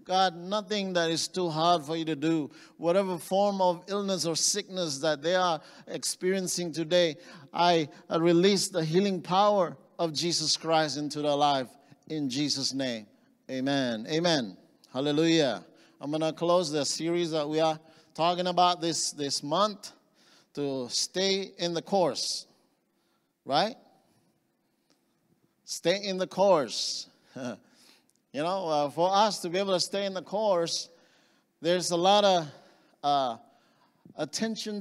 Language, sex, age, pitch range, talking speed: English, male, 50-69, 155-190 Hz, 140 wpm